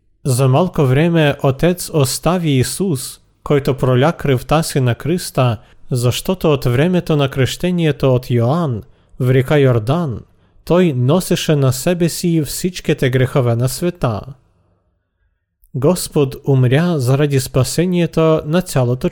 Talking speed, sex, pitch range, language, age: 115 wpm, male, 120-160 Hz, Bulgarian, 40-59